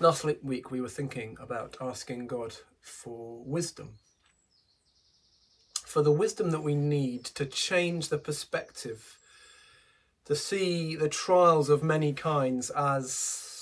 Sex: male